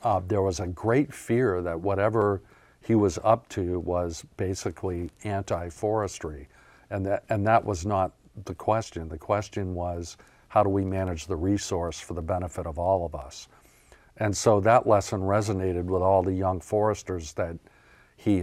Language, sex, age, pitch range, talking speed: English, male, 50-69, 85-105 Hz, 160 wpm